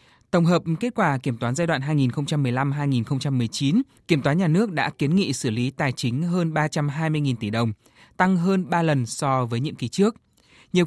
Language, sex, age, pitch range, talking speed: Vietnamese, male, 20-39, 130-170 Hz, 190 wpm